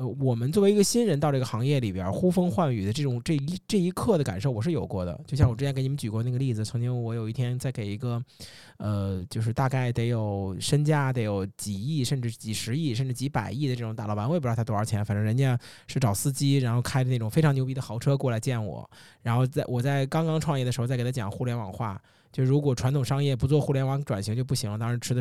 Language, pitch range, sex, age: Chinese, 115-140 Hz, male, 20-39